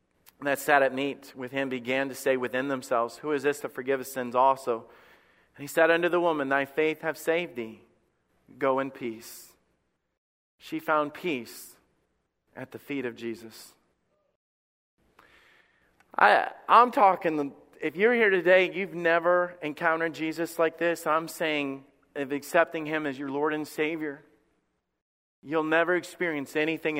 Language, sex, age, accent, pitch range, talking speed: English, male, 40-59, American, 135-170 Hz, 150 wpm